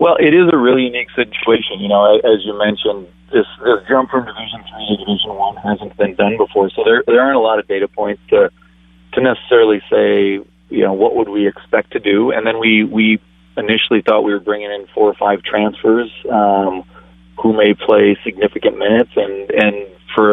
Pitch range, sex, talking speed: 100-120 Hz, male, 205 wpm